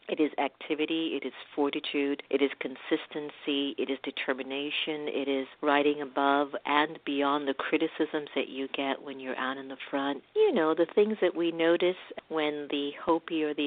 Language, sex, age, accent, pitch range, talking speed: English, female, 50-69, American, 135-155 Hz, 180 wpm